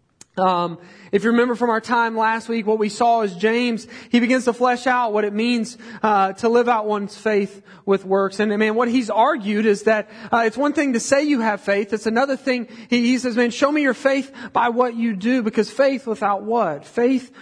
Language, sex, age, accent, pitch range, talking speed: English, male, 40-59, American, 215-260 Hz, 225 wpm